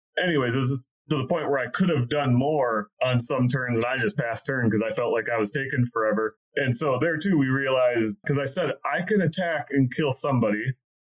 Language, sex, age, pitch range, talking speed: English, male, 30-49, 120-145 Hz, 240 wpm